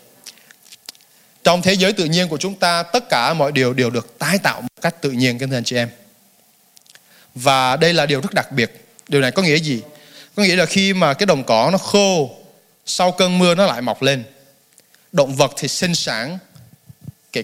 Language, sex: Vietnamese, male